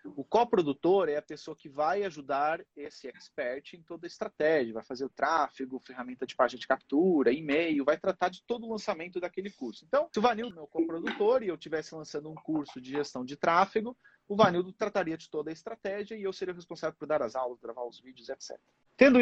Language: Portuguese